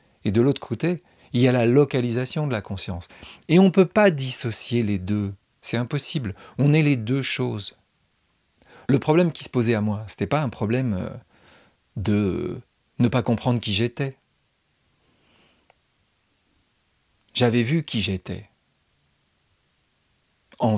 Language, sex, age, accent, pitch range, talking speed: French, male, 40-59, French, 105-135 Hz, 145 wpm